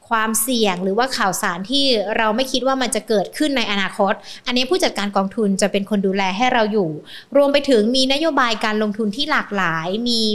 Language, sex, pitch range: Thai, female, 205-255 Hz